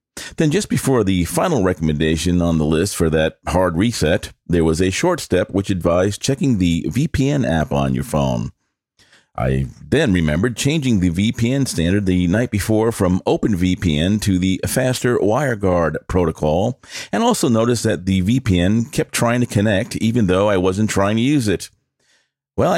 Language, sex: English, male